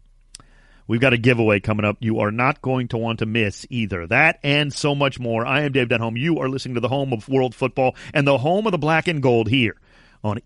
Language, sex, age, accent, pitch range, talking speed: English, male, 40-59, American, 125-175 Hz, 245 wpm